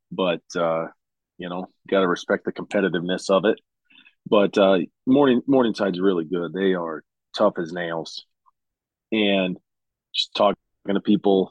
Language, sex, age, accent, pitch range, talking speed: English, male, 30-49, American, 90-105 Hz, 145 wpm